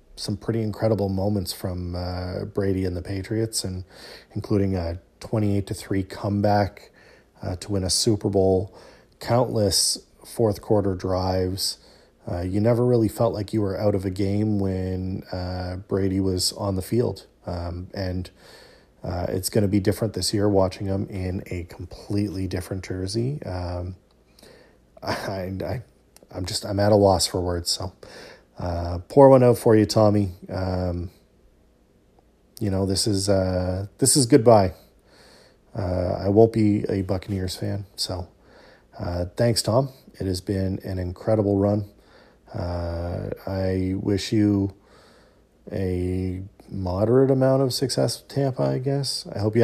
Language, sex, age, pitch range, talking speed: English, male, 40-59, 95-105 Hz, 150 wpm